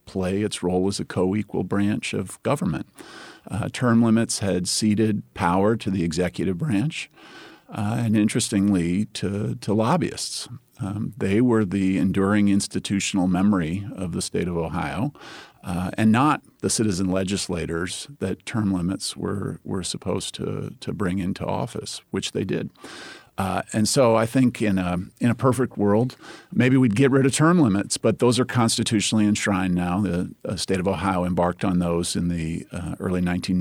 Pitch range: 90-110 Hz